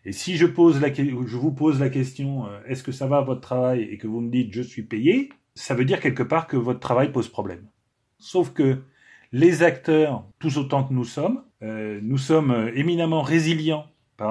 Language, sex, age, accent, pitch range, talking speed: French, male, 30-49, French, 110-150 Hz, 220 wpm